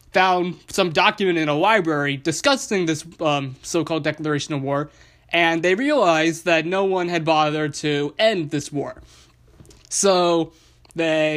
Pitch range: 140-175 Hz